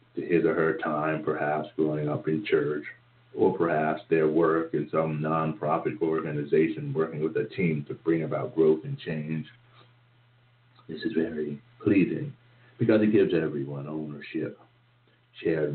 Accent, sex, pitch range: American, male, 80-120 Hz